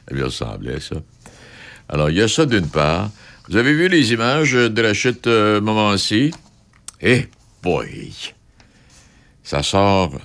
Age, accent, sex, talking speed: 60-79, French, male, 140 wpm